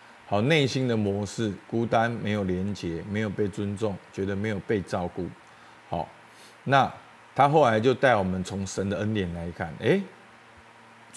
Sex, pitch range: male, 100-140 Hz